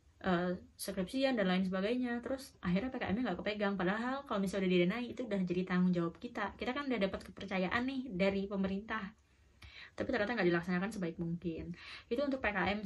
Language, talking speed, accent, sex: Indonesian, 175 wpm, native, female